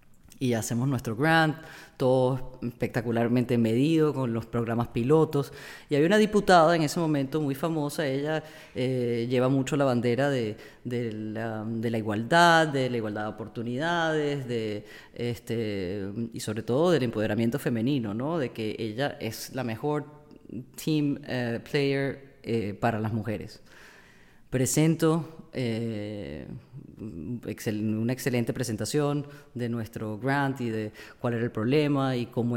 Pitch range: 115-155 Hz